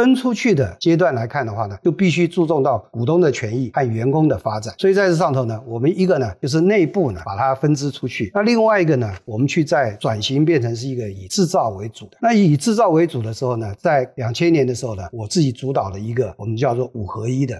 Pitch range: 115-170 Hz